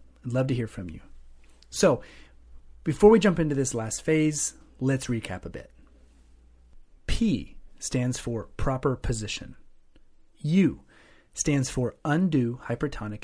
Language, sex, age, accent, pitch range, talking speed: English, male, 30-49, American, 110-155 Hz, 125 wpm